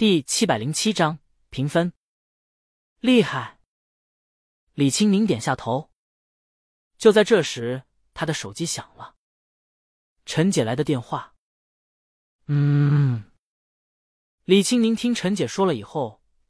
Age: 20-39